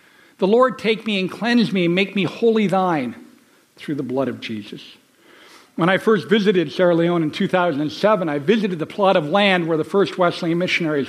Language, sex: English, male